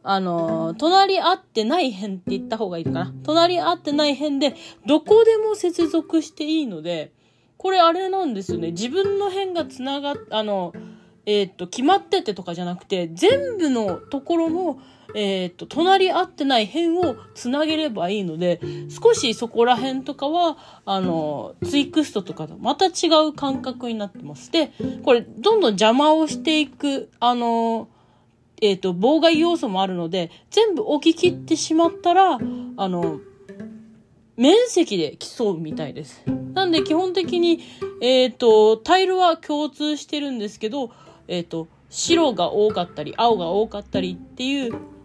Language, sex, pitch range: Japanese, female, 195-325 Hz